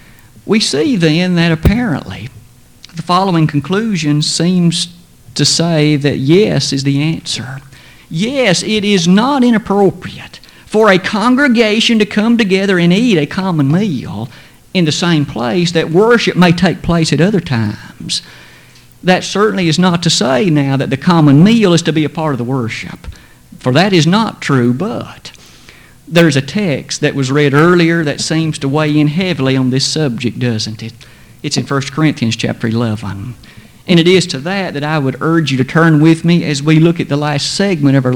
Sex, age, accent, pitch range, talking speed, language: male, 50-69, American, 135-180 Hz, 180 wpm, English